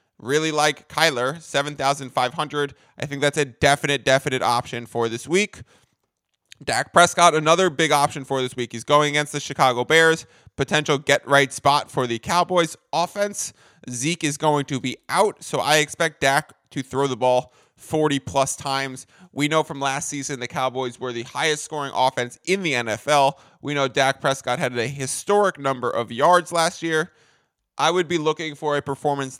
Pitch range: 130-155 Hz